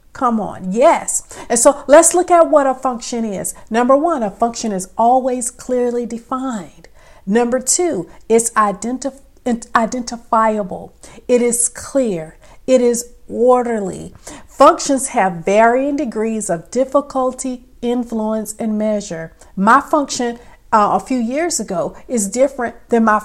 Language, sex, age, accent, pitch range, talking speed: English, female, 50-69, American, 220-270 Hz, 130 wpm